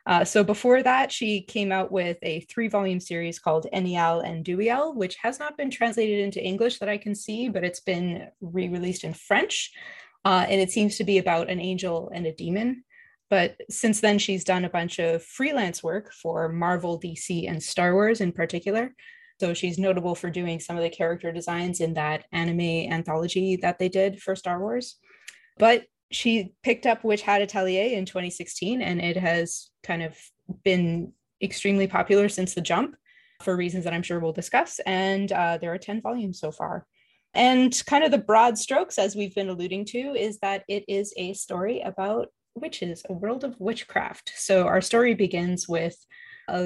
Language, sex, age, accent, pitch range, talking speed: English, female, 20-39, American, 175-225 Hz, 190 wpm